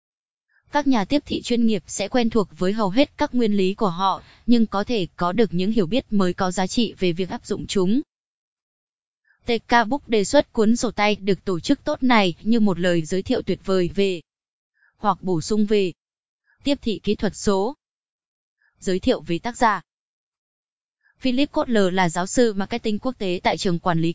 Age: 20-39